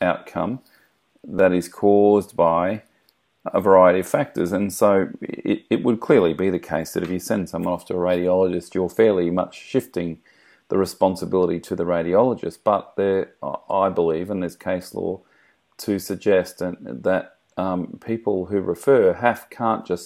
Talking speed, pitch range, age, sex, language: 165 wpm, 90-105 Hz, 40-59, male, English